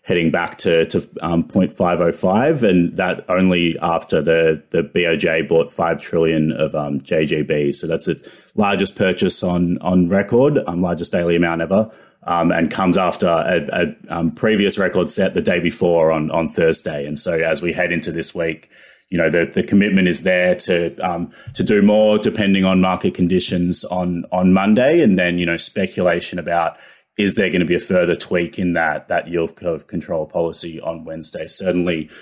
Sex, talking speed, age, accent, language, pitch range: male, 185 wpm, 30-49, Australian, English, 85-95 Hz